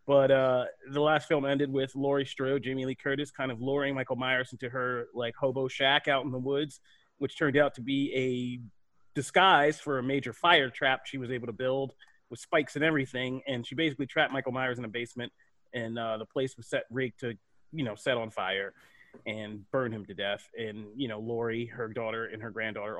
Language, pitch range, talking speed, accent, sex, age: English, 115-150 Hz, 215 wpm, American, male, 30-49